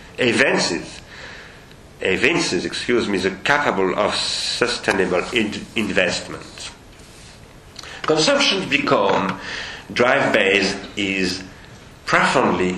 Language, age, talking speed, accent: French, 50-69, 65 wpm, French